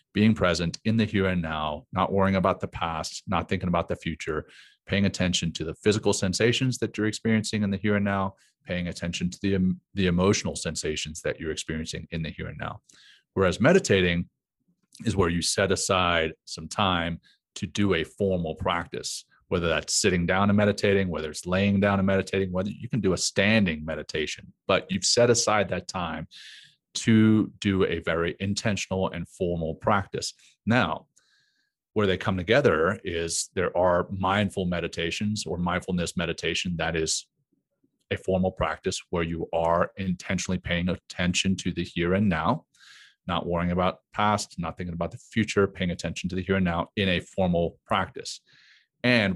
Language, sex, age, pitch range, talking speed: English, male, 30-49, 85-100 Hz, 175 wpm